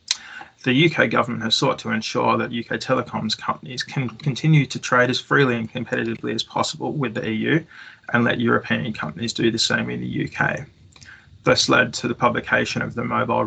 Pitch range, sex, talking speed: 110-125 Hz, male, 185 wpm